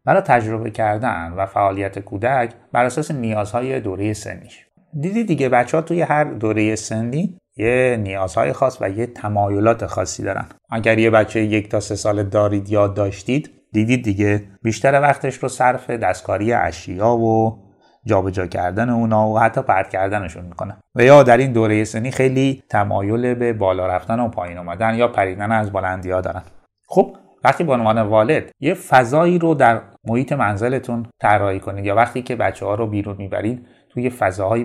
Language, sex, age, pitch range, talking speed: Persian, male, 30-49, 100-130 Hz, 165 wpm